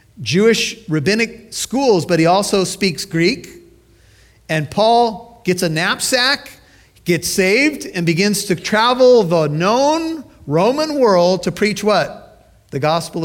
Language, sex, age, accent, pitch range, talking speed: English, male, 50-69, American, 140-190 Hz, 125 wpm